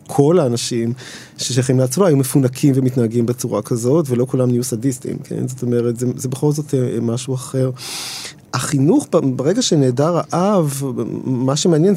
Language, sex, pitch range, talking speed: Hebrew, male, 125-150 Hz, 140 wpm